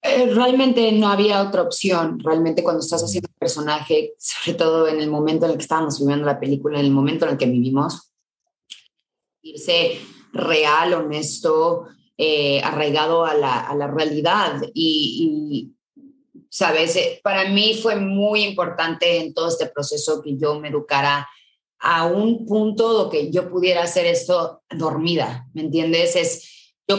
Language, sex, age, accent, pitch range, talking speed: Spanish, female, 20-39, Mexican, 155-195 Hz, 155 wpm